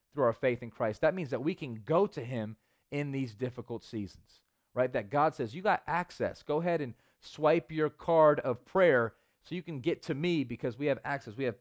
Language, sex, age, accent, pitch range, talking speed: English, male, 30-49, American, 115-150 Hz, 225 wpm